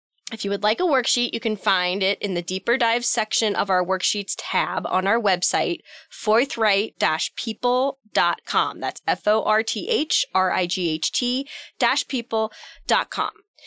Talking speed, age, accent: 110 wpm, 20-39, American